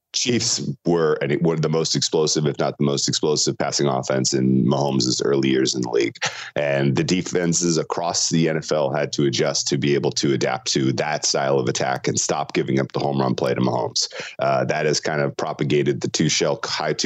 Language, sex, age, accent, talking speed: English, male, 30-49, American, 215 wpm